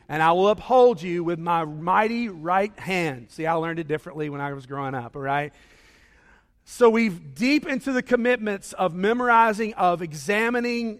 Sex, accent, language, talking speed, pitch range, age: male, American, English, 175 wpm, 160-215 Hz, 40-59